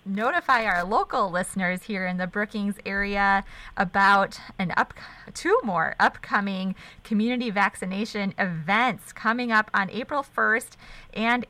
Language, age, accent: English, 20-39, American